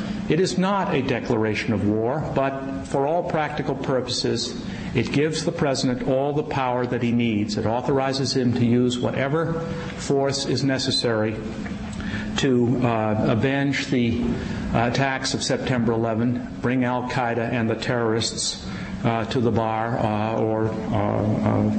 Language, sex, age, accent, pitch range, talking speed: English, male, 50-69, American, 120-155 Hz, 145 wpm